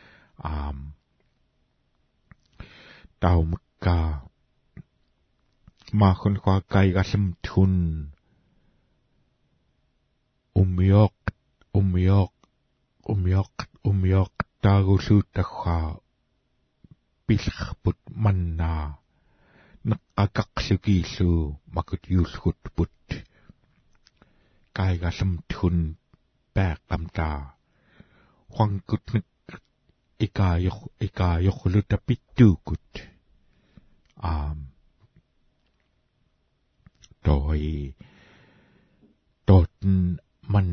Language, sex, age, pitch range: English, male, 60-79, 85-100 Hz